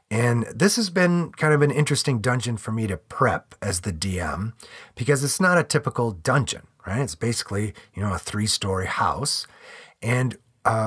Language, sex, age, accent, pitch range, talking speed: English, male, 40-59, American, 100-145 Hz, 175 wpm